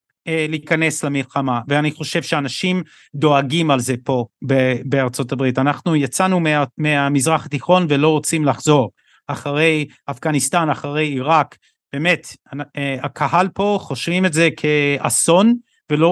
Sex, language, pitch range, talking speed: male, Hebrew, 140-170 Hz, 115 wpm